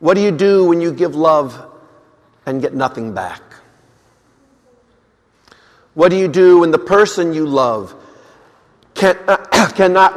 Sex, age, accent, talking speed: male, 50-69, American, 135 wpm